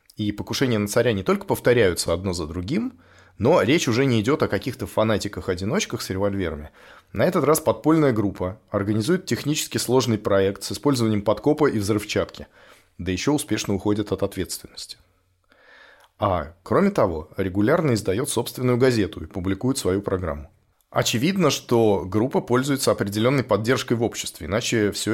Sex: male